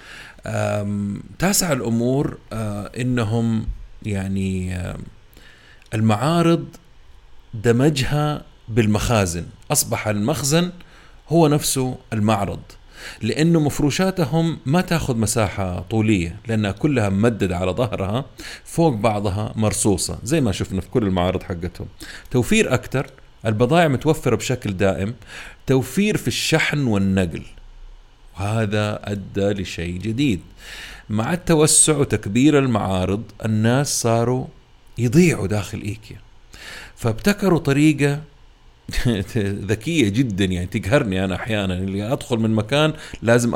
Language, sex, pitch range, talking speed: Arabic, male, 100-140 Hz, 100 wpm